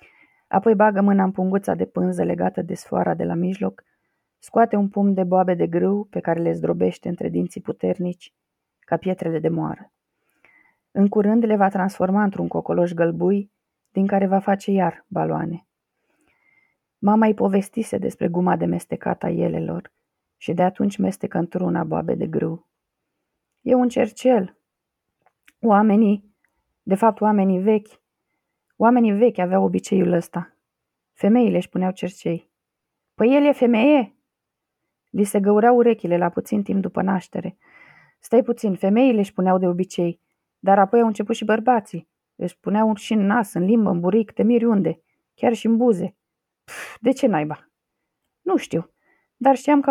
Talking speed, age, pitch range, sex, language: 155 wpm, 30-49, 180-225 Hz, female, Romanian